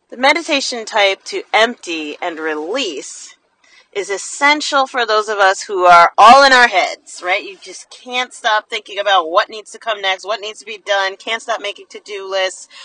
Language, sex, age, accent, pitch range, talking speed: English, female, 30-49, American, 195-310 Hz, 190 wpm